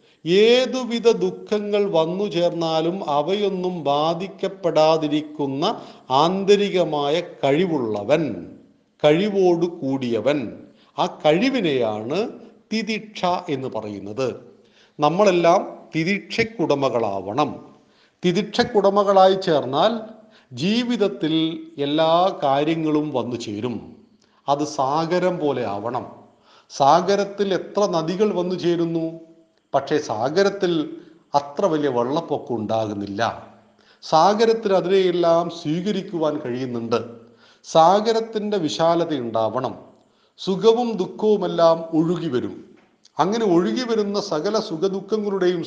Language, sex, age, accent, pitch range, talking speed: Malayalam, male, 40-59, native, 150-200 Hz, 70 wpm